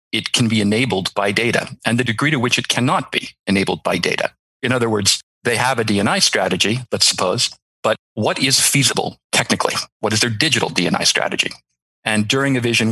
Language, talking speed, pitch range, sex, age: English, 195 wpm, 95-120 Hz, male, 40-59